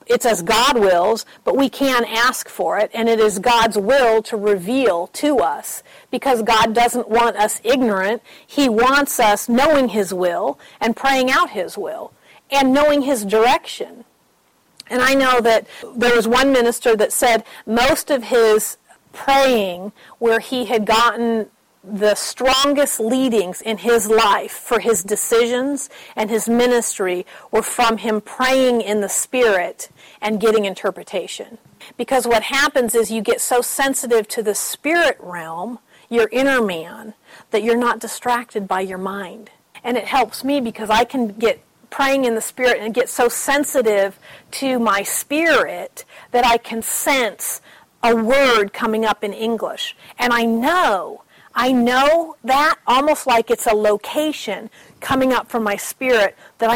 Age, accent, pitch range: 40-59, American, 220-260 Hz